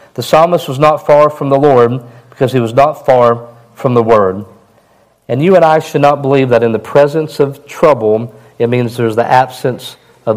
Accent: American